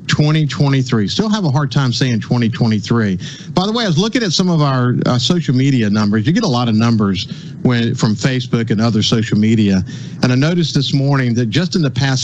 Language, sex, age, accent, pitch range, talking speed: English, male, 50-69, American, 120-155 Hz, 220 wpm